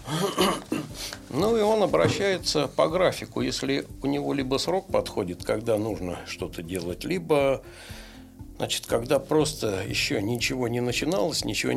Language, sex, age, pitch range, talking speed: Russian, male, 60-79, 110-155 Hz, 130 wpm